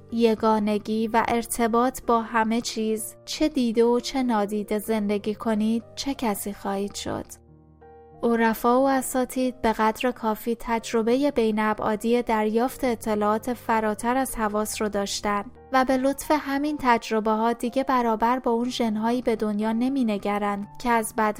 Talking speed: 140 wpm